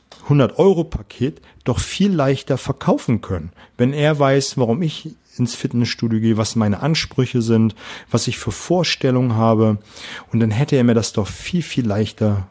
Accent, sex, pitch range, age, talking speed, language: German, male, 110-135 Hz, 40-59, 160 wpm, German